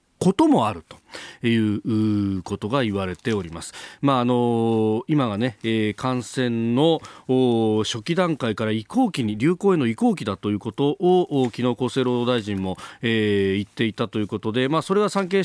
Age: 40-59